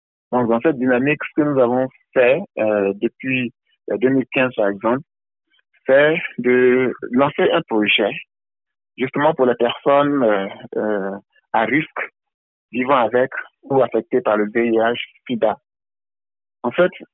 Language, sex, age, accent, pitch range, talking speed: French, male, 60-79, French, 115-140 Hz, 140 wpm